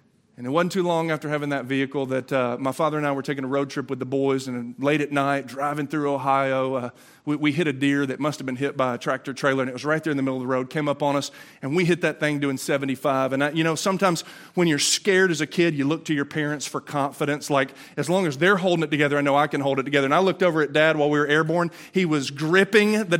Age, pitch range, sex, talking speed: 30-49, 135-180 Hz, male, 290 wpm